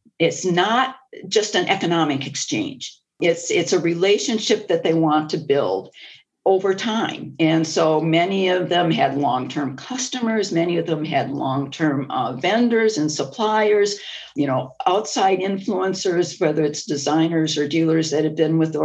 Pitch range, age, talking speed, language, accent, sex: 155-205 Hz, 50-69, 160 wpm, English, American, female